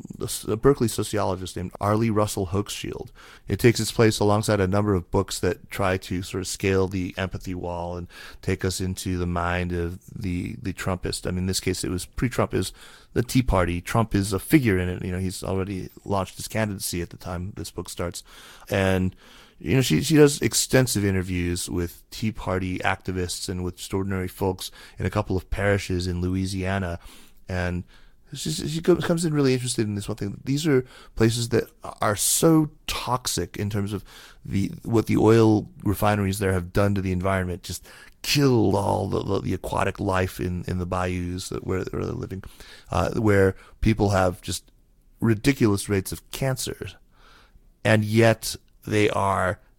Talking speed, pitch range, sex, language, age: 180 wpm, 90-110 Hz, male, English, 30-49